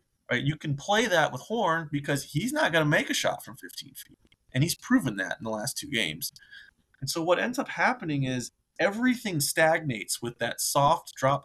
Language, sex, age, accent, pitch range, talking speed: English, male, 30-49, American, 125-160 Hz, 210 wpm